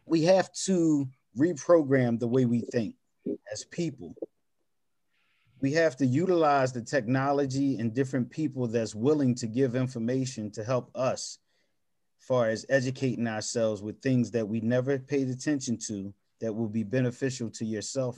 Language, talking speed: English, 150 wpm